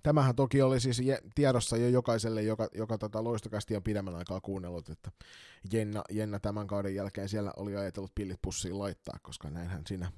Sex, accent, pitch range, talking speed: male, native, 100-125 Hz, 170 wpm